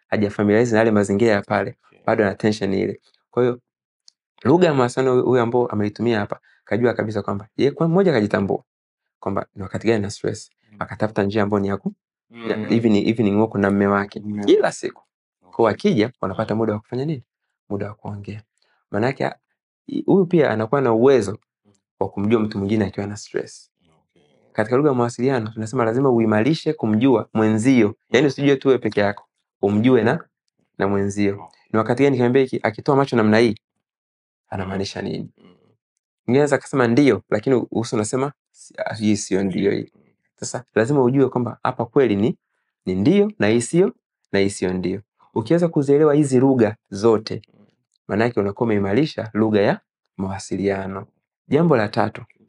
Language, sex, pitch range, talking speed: Swahili, male, 100-125 Hz, 145 wpm